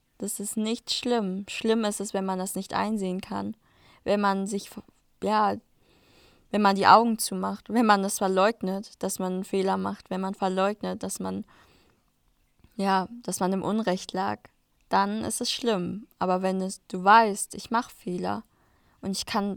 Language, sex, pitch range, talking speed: German, female, 190-215 Hz, 170 wpm